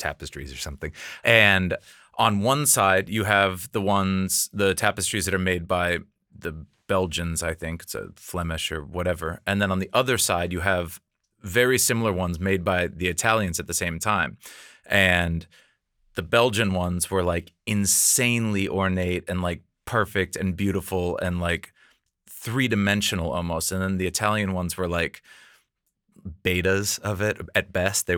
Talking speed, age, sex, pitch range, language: 160 wpm, 30-49, male, 85-100 Hz, Danish